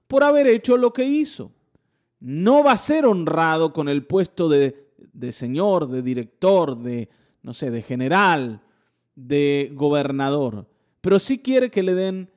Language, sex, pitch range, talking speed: Spanish, male, 145-235 Hz, 155 wpm